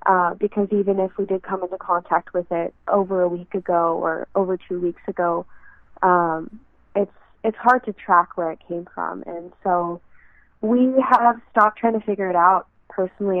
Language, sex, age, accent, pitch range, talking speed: English, female, 20-39, American, 185-205 Hz, 185 wpm